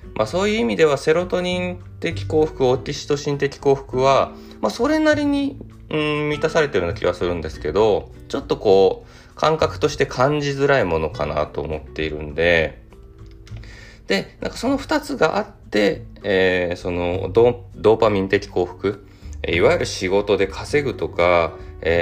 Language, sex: Japanese, male